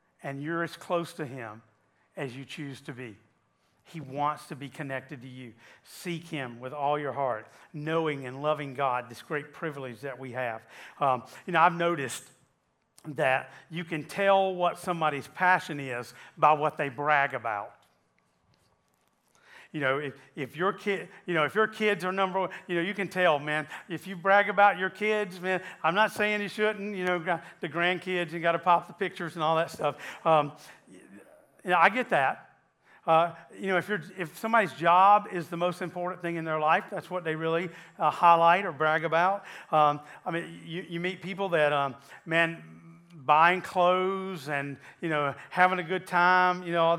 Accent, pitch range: American, 145-180 Hz